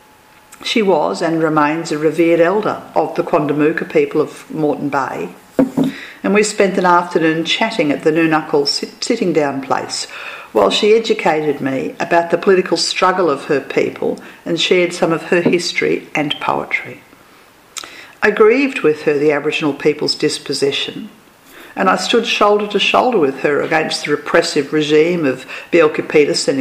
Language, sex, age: English, female, 50-69